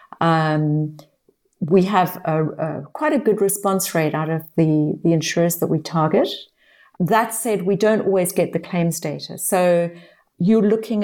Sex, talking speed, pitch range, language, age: female, 165 wpm, 165-200 Hz, English, 50-69